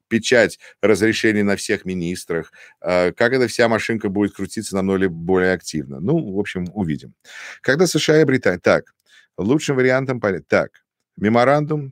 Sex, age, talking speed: male, 50-69, 140 wpm